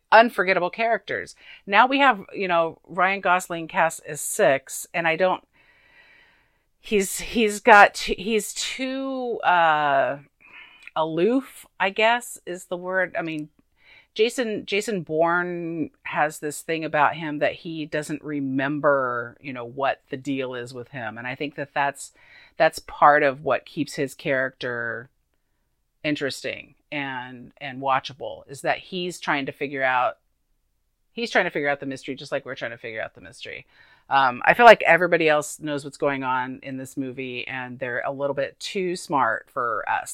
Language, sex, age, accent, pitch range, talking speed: English, female, 50-69, American, 135-180 Hz, 165 wpm